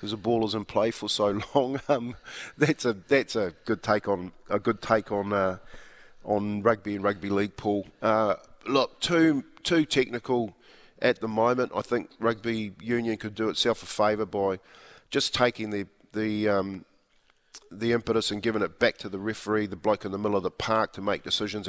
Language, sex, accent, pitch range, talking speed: English, male, Australian, 100-115 Hz, 195 wpm